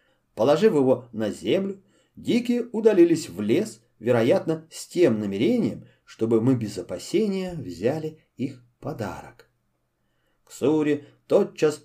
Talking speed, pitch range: 105 wpm, 125-185 Hz